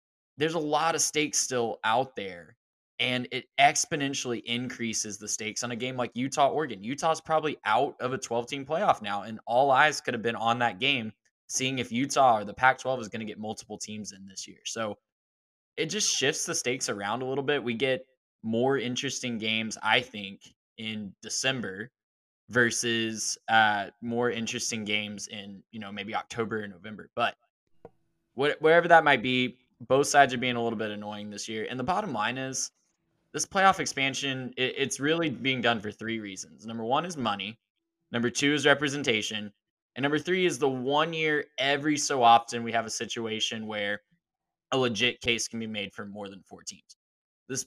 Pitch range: 110-140 Hz